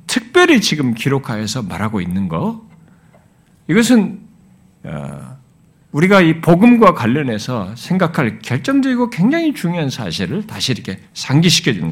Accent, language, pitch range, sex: native, Korean, 160-220 Hz, male